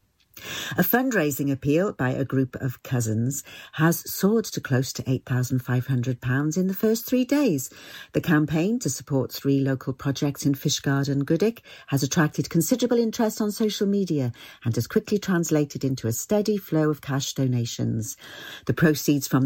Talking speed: 155 wpm